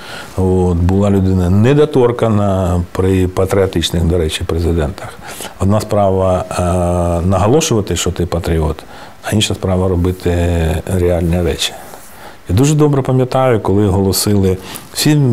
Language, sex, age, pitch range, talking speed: Ukrainian, male, 40-59, 90-110 Hz, 115 wpm